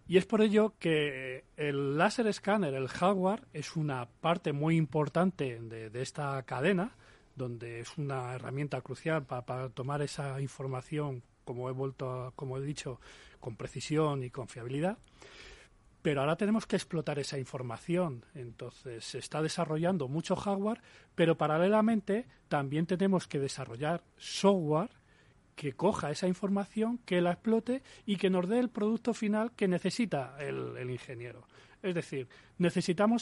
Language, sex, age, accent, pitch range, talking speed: Spanish, male, 40-59, Spanish, 135-200 Hz, 150 wpm